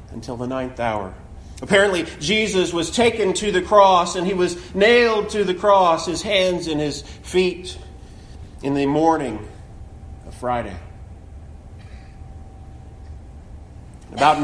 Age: 40-59